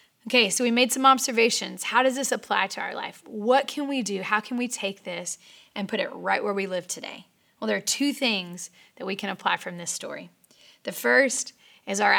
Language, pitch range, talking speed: English, 195-250 Hz, 225 wpm